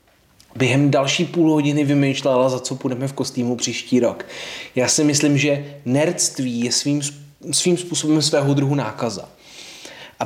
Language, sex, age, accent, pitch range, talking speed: Czech, male, 20-39, native, 130-155 Hz, 145 wpm